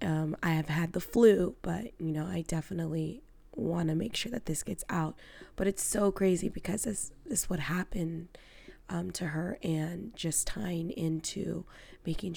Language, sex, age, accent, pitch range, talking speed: English, female, 20-39, American, 160-180 Hz, 180 wpm